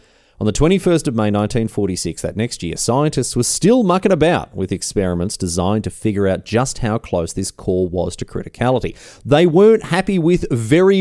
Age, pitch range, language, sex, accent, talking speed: 30-49, 95-145 Hz, English, male, Australian, 180 wpm